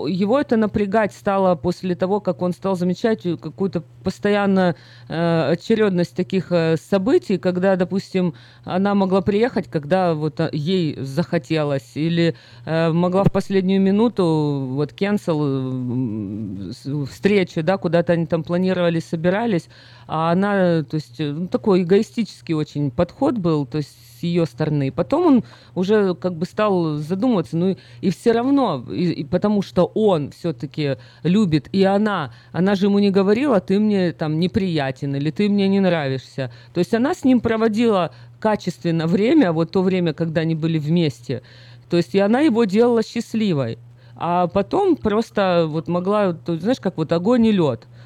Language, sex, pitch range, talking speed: Russian, female, 150-200 Hz, 145 wpm